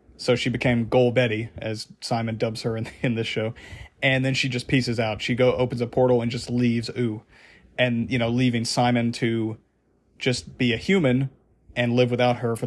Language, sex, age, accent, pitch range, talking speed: English, male, 40-59, American, 115-130 Hz, 205 wpm